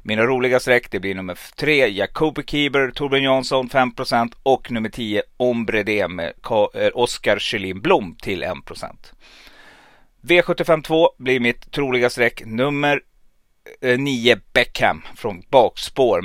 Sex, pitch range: male, 110-140 Hz